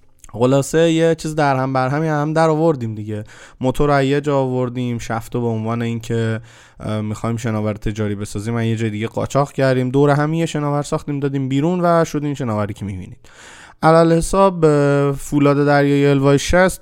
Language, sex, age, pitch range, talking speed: Persian, male, 20-39, 120-155 Hz, 160 wpm